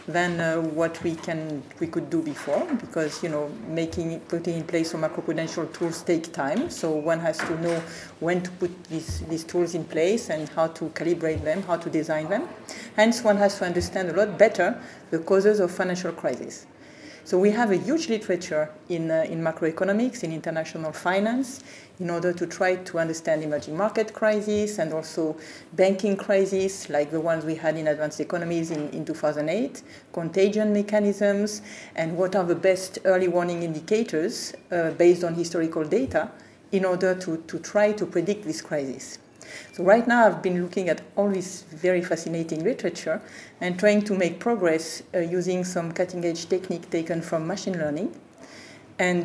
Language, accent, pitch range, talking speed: English, French, 165-195 Hz, 175 wpm